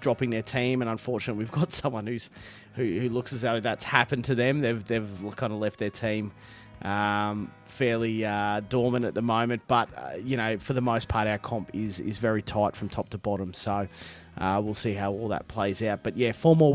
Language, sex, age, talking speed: English, male, 30-49, 225 wpm